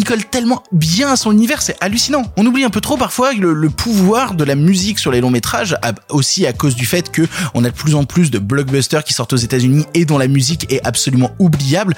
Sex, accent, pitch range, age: male, French, 120-165 Hz, 20-39